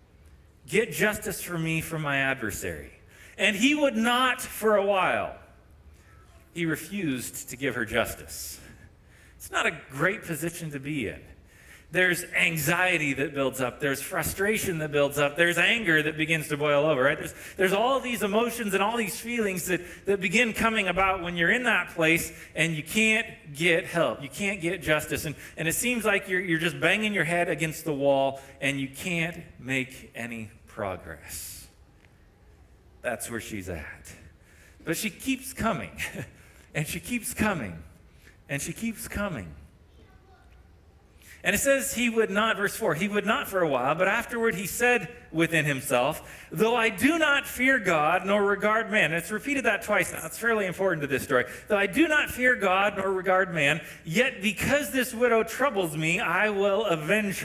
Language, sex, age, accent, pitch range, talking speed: English, male, 40-59, American, 130-210 Hz, 175 wpm